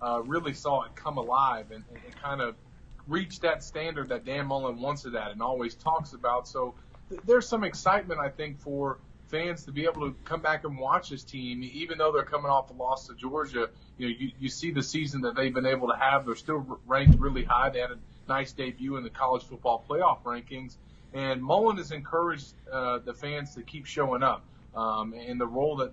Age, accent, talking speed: 40-59, American, 225 wpm